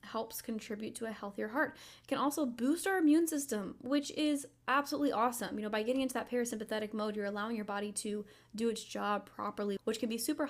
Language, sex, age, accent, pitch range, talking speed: English, female, 10-29, American, 205-245 Hz, 215 wpm